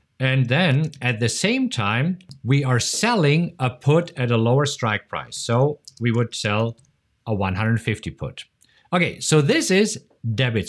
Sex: male